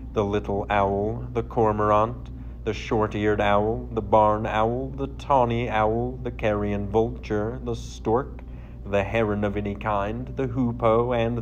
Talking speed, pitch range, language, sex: 140 wpm, 100-115 Hz, English, male